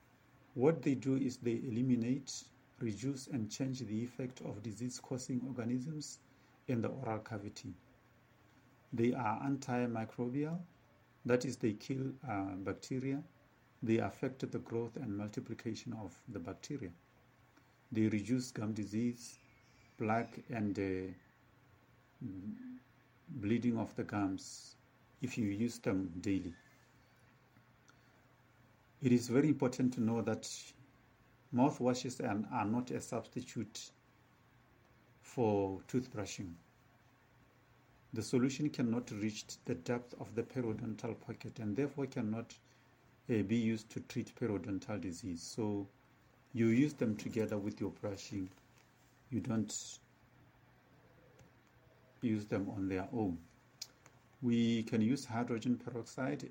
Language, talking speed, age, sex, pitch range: English, 115 wpm, 50-69, male, 110-130 Hz